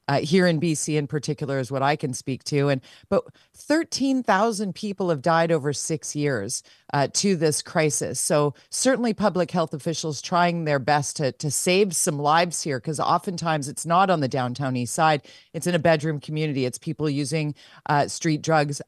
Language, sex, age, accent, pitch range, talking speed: English, female, 40-59, American, 150-205 Hz, 190 wpm